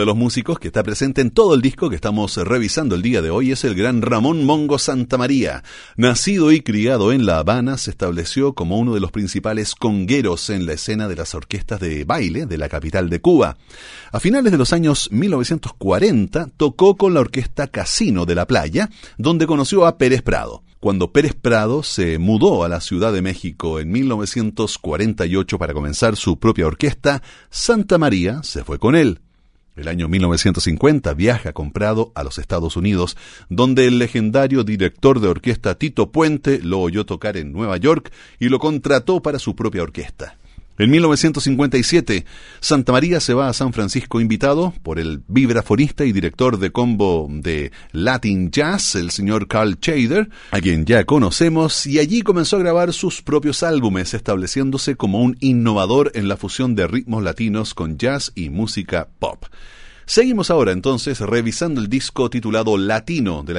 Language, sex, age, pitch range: Spanish, male, 40-59, 95-140 Hz